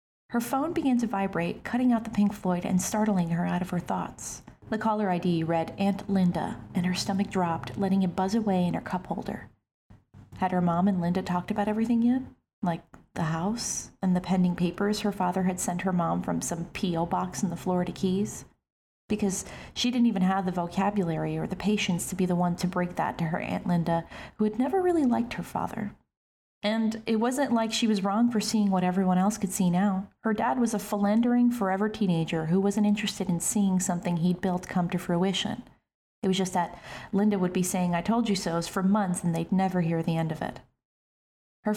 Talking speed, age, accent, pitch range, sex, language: 215 wpm, 30-49, American, 180-210 Hz, female, English